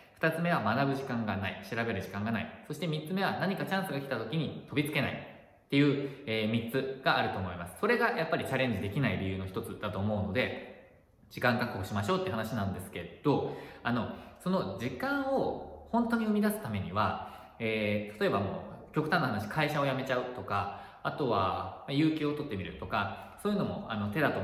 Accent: native